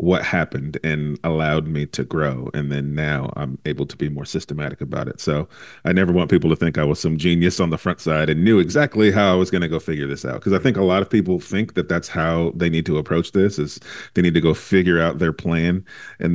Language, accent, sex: English, American, male